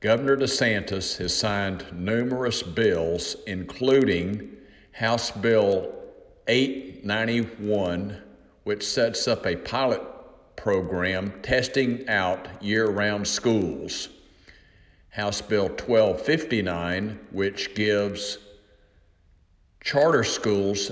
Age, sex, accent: 50-69, male, American